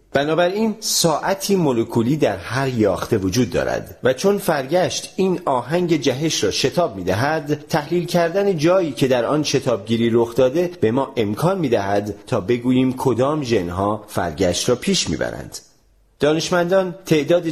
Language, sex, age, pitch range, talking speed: Persian, male, 40-59, 105-165 Hz, 145 wpm